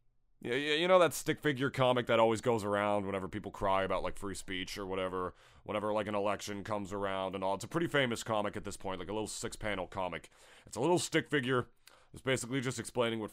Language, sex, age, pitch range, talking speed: English, male, 30-49, 105-150 Hz, 230 wpm